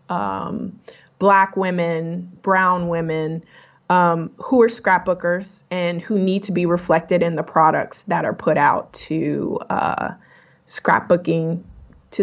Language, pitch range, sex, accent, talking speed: English, 175-225 Hz, female, American, 130 wpm